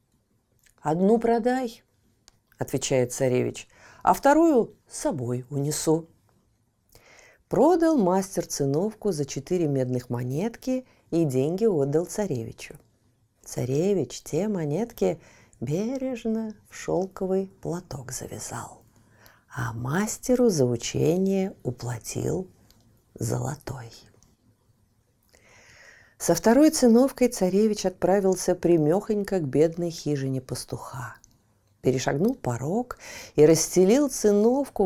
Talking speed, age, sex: 85 wpm, 40-59, female